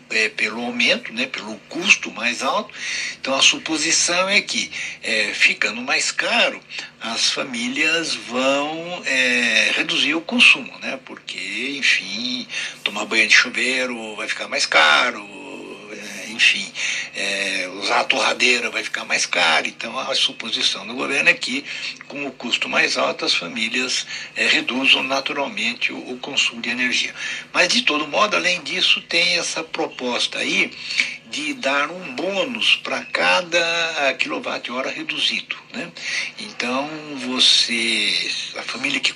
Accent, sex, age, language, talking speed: Brazilian, male, 60-79, Portuguese, 130 wpm